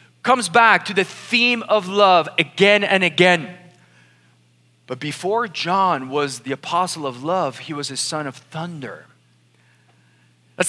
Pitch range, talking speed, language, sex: 150-220 Hz, 140 wpm, English, male